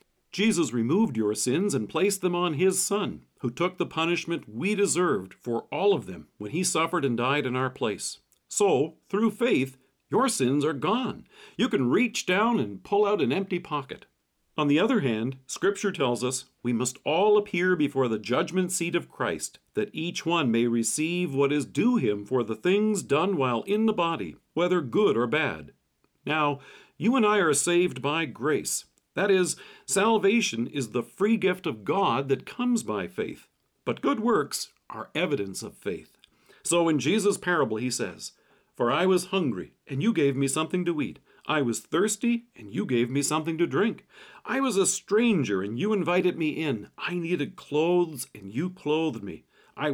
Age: 50-69